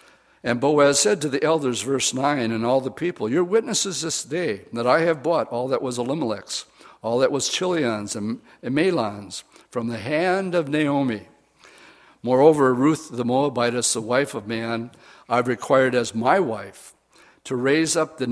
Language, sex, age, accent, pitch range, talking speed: English, male, 60-79, American, 125-155 Hz, 170 wpm